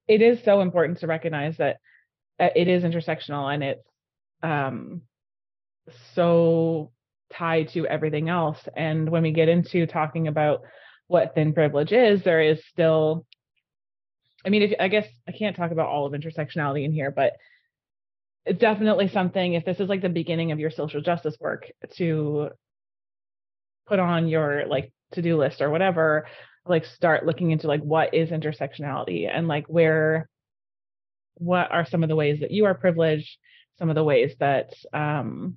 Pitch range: 145-170 Hz